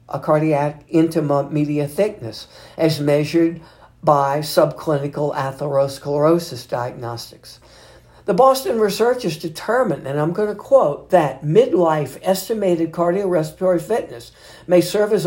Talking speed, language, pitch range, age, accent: 110 wpm, English, 145-180 Hz, 60-79, American